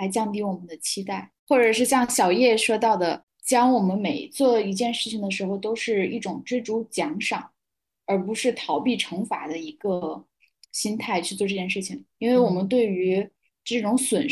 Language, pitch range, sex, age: Chinese, 190-240 Hz, female, 10-29